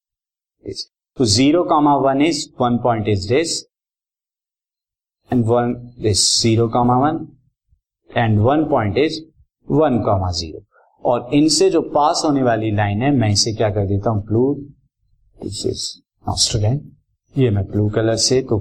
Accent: native